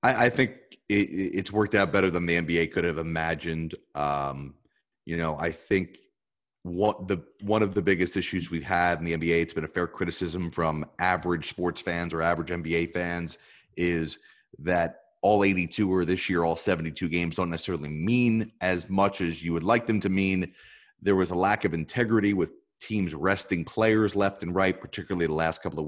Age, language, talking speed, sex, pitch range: 30-49, English, 190 wpm, male, 85-105 Hz